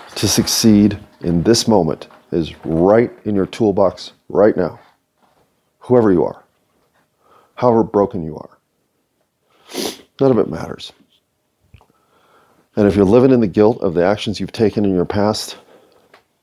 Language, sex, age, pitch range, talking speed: English, male, 40-59, 95-115 Hz, 140 wpm